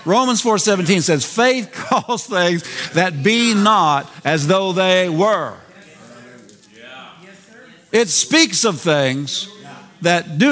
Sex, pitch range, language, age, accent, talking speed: male, 155-215 Hz, English, 50-69, American, 115 wpm